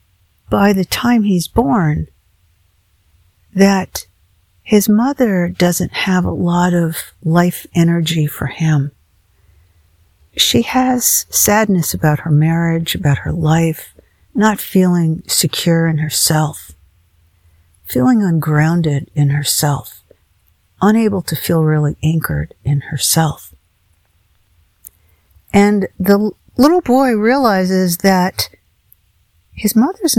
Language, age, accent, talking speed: English, 50-69, American, 100 wpm